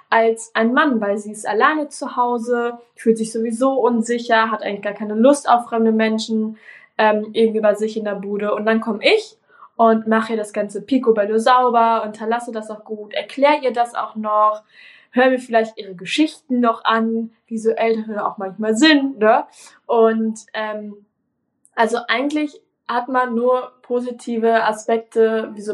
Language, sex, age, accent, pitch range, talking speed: German, female, 20-39, German, 215-245 Hz, 170 wpm